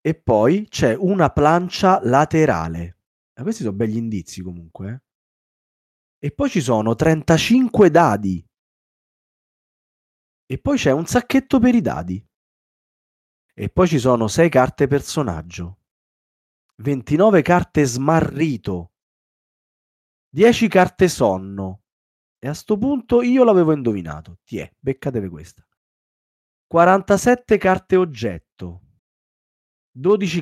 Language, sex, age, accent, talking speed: Italian, male, 30-49, native, 105 wpm